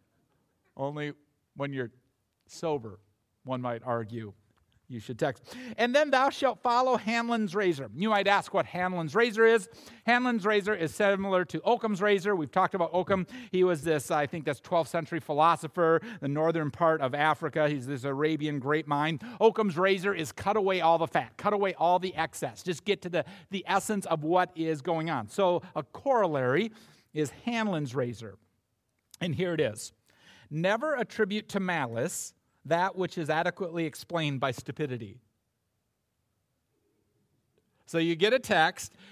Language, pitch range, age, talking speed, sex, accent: English, 150-215 Hz, 50-69, 160 wpm, male, American